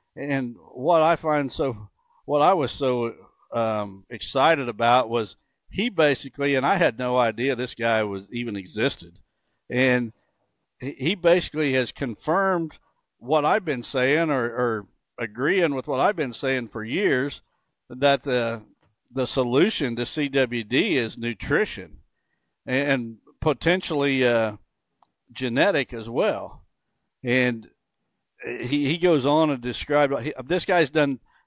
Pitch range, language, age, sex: 120-150 Hz, English, 60-79, male